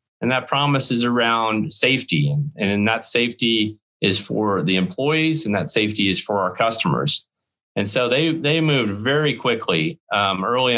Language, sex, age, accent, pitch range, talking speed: English, male, 30-49, American, 100-120 Hz, 165 wpm